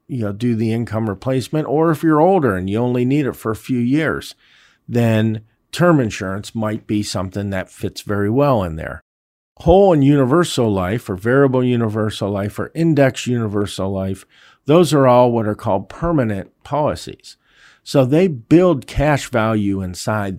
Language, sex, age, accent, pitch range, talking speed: English, male, 50-69, American, 105-135 Hz, 170 wpm